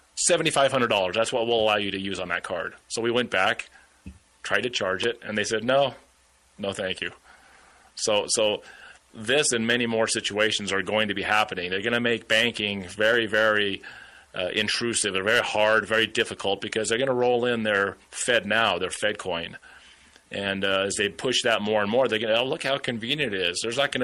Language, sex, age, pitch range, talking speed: English, male, 30-49, 100-120 Hz, 215 wpm